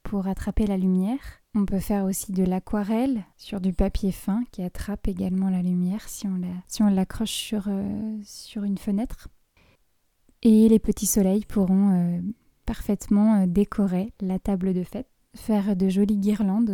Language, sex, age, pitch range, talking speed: French, female, 20-39, 200-235 Hz, 170 wpm